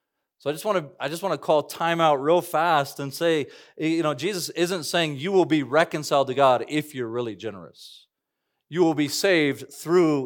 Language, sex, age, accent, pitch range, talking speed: English, male, 40-59, American, 125-160 Hz, 210 wpm